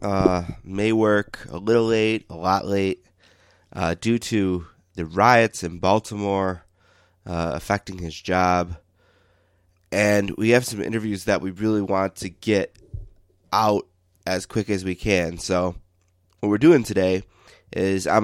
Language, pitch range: English, 90-100 Hz